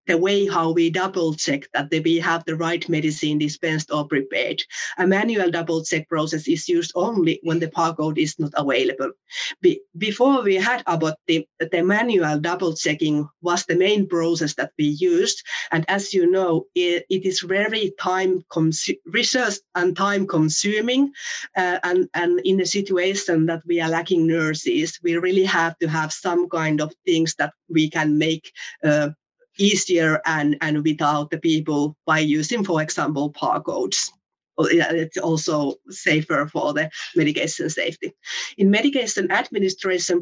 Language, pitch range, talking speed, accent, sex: English, 160-190 Hz, 155 wpm, Finnish, female